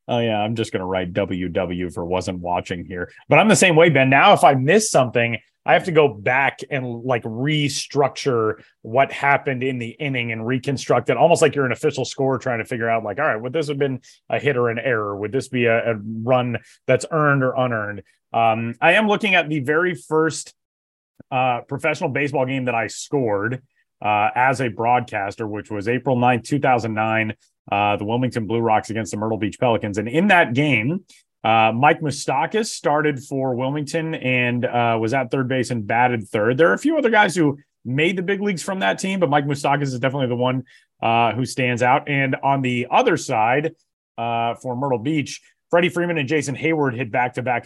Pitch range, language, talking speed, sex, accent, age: 110-145 Hz, English, 210 wpm, male, American, 30-49